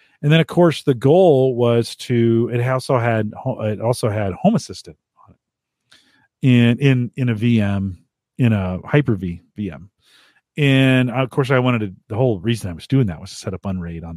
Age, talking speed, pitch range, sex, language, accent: 40-59, 205 wpm, 105-130 Hz, male, English, American